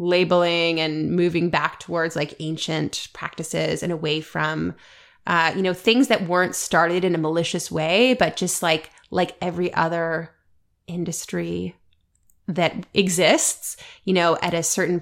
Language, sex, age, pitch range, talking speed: English, female, 20-39, 160-185 Hz, 145 wpm